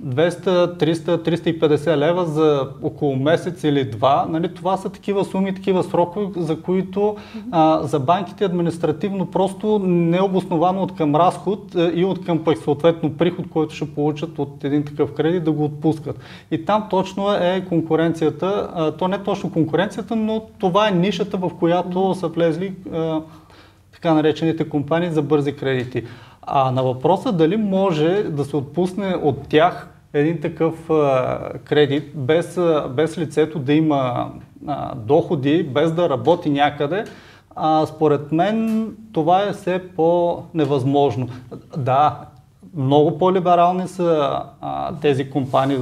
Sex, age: male, 30-49